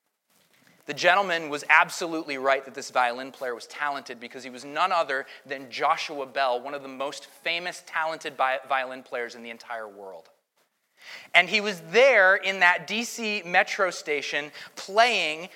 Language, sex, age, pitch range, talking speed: English, male, 30-49, 150-205 Hz, 160 wpm